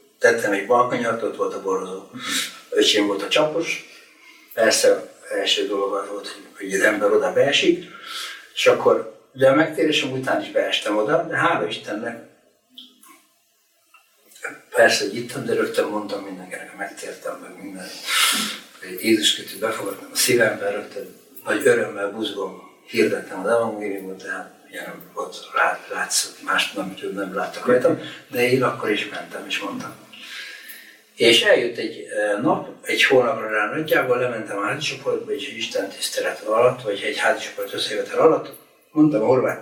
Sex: male